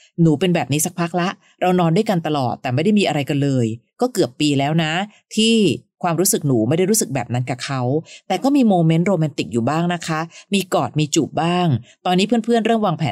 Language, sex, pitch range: Thai, female, 140-185 Hz